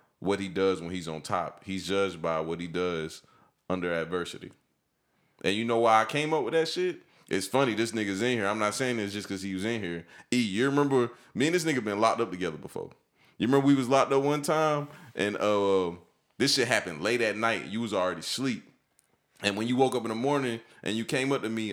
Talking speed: 240 wpm